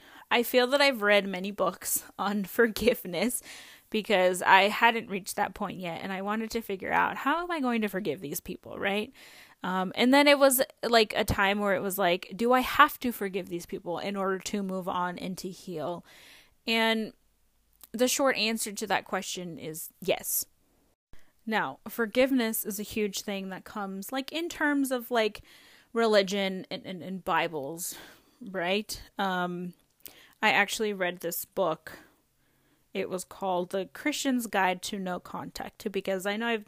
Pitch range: 190-245 Hz